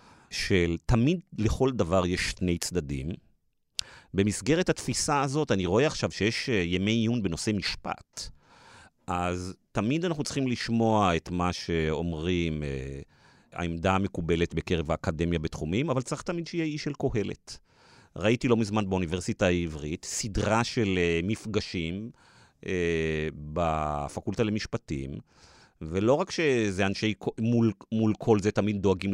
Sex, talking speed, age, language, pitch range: male, 130 wpm, 40-59, Hebrew, 85-120 Hz